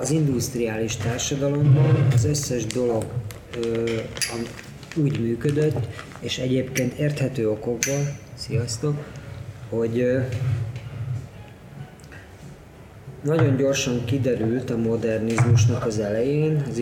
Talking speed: 85 wpm